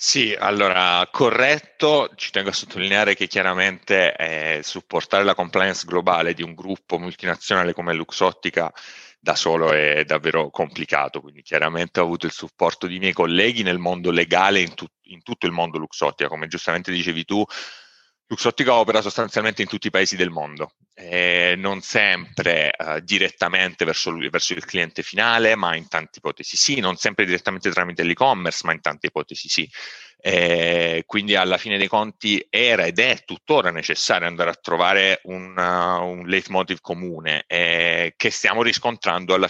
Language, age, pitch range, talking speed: Italian, 30-49, 85-100 Hz, 155 wpm